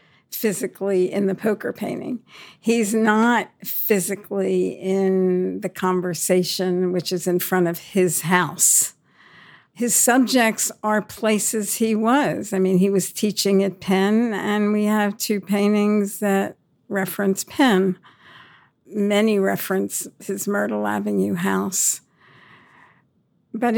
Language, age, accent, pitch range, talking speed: English, 60-79, American, 190-215 Hz, 115 wpm